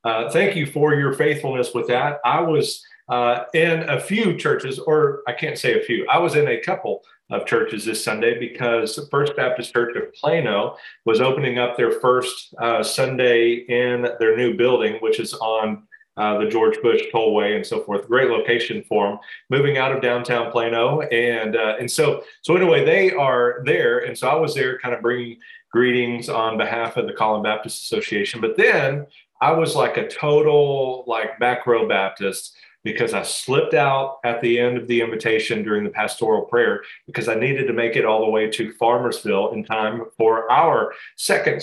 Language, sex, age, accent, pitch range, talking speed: English, male, 40-59, American, 120-185 Hz, 195 wpm